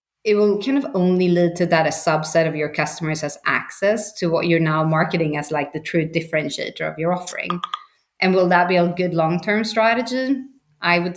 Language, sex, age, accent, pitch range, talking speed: English, female, 30-49, Swedish, 165-205 Hz, 205 wpm